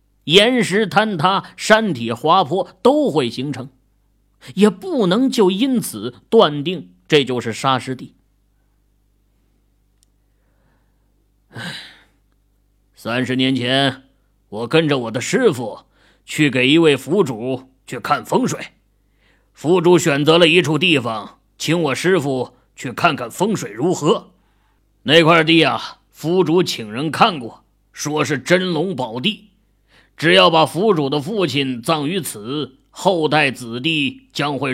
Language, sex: Chinese, male